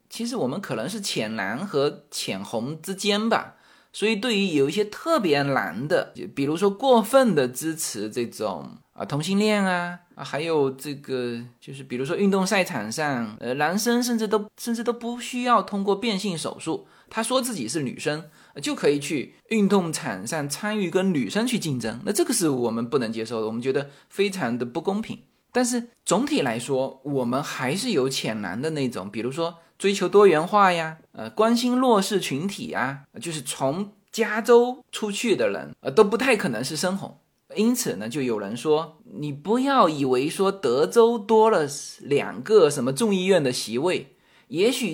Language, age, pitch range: Chinese, 20-39, 150-230 Hz